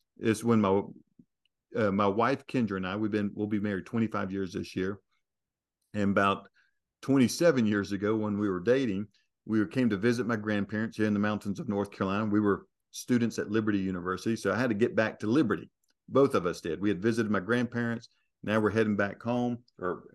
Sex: male